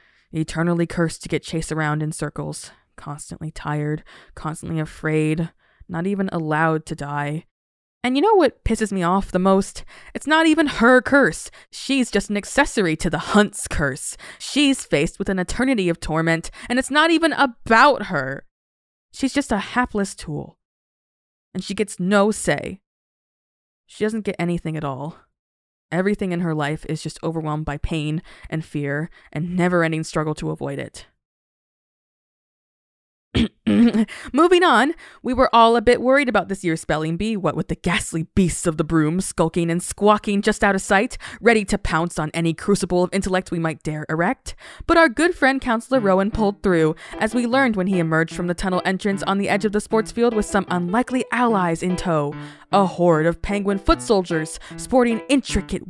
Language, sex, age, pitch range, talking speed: English, female, 20-39, 160-220 Hz, 175 wpm